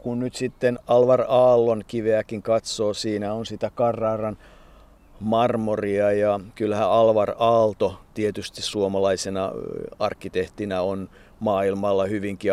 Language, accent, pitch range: Finnish, native, 100-120 Hz